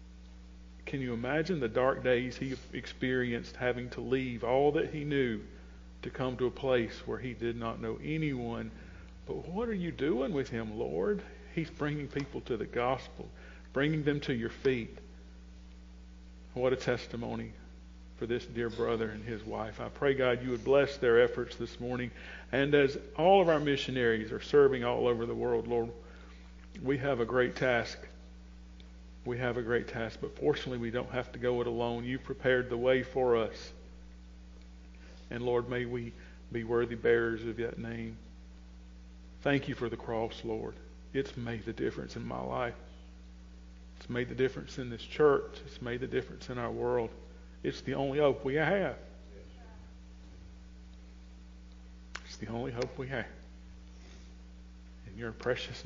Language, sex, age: English, male, 50-69